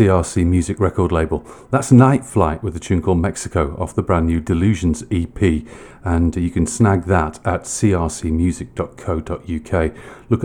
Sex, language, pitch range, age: male, English, 85-105 Hz, 40-59